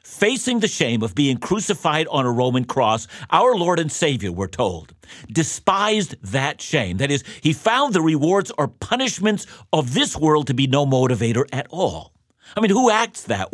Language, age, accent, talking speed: English, 50-69, American, 180 wpm